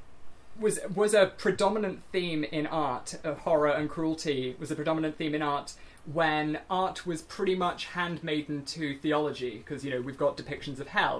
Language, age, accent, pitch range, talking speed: English, 20-39, British, 140-170 Hz, 175 wpm